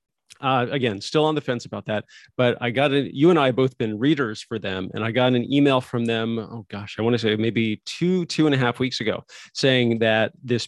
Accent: American